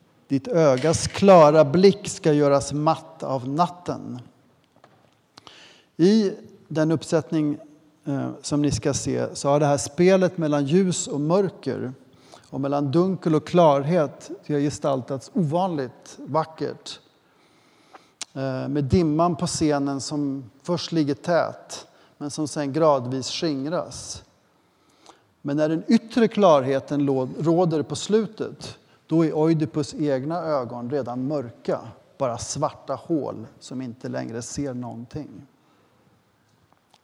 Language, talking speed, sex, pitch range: Swedish, 115 wpm, male, 140-170 Hz